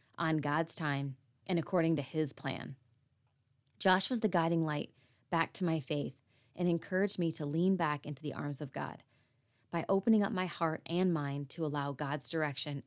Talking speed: 180 wpm